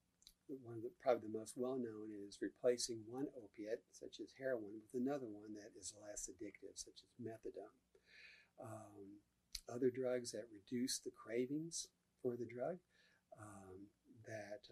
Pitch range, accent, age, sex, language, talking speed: 100-125 Hz, American, 50-69, male, English, 145 wpm